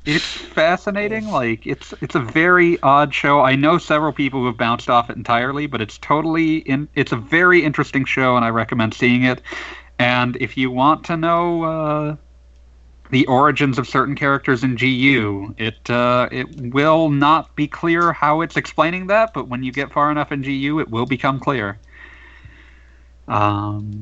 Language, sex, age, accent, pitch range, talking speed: English, male, 40-59, American, 95-140 Hz, 175 wpm